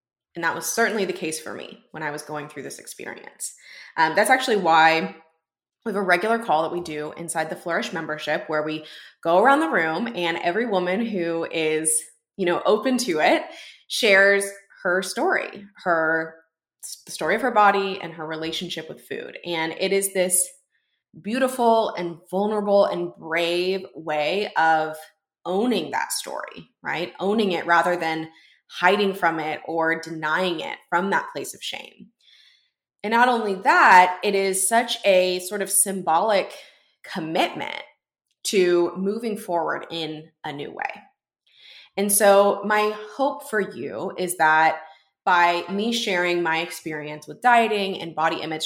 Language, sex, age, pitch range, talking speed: English, female, 20-39, 160-200 Hz, 160 wpm